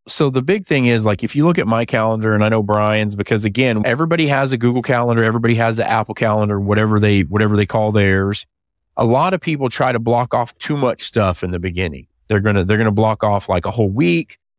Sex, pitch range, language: male, 100-120 Hz, English